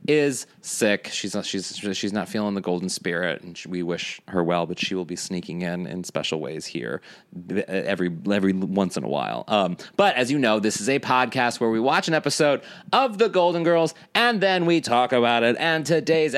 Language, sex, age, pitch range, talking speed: English, male, 30-49, 100-150 Hz, 215 wpm